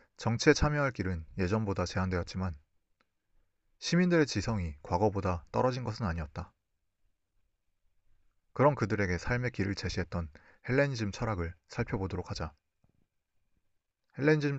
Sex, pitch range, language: male, 85-115 Hz, Korean